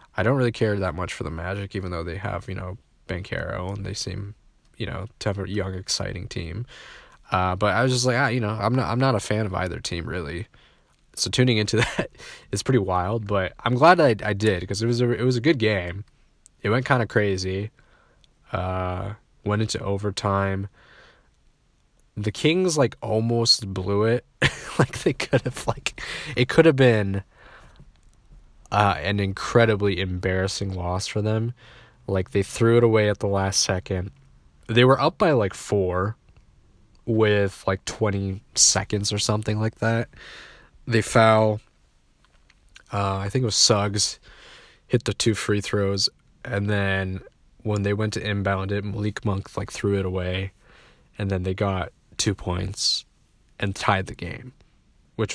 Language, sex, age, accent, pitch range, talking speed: English, male, 20-39, American, 95-115 Hz, 175 wpm